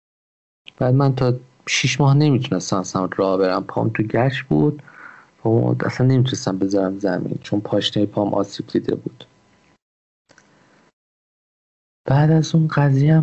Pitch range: 105-130 Hz